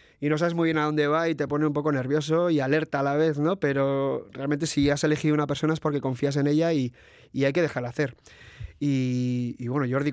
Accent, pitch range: Spanish, 140-170 Hz